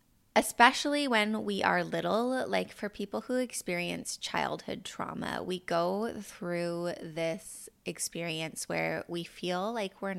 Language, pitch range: English, 165-210 Hz